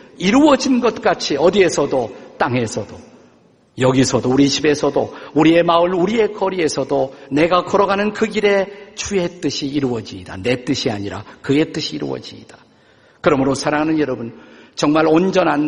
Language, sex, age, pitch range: Korean, male, 50-69, 135-200 Hz